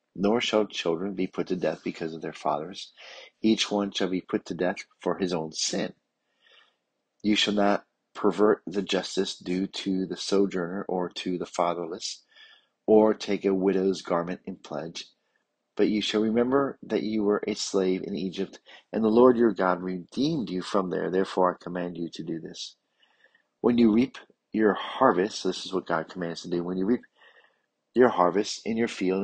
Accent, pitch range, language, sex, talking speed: American, 90-105 Hz, English, male, 185 wpm